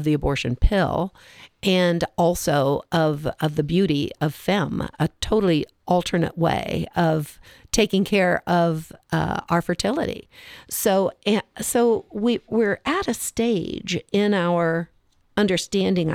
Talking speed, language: 125 wpm, English